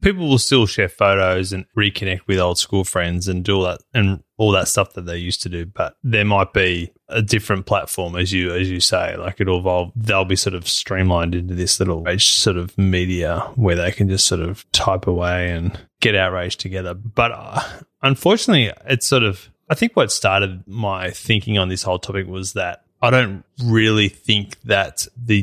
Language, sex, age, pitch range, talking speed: English, male, 20-39, 95-110 Hz, 205 wpm